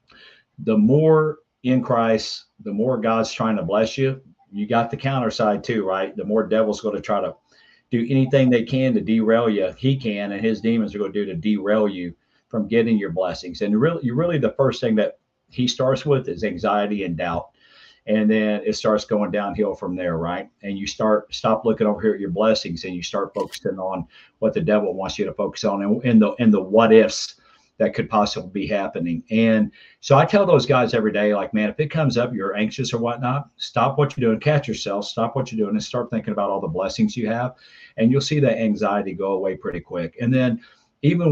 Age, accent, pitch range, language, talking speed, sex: 50-69, American, 105-130 Hz, English, 220 wpm, male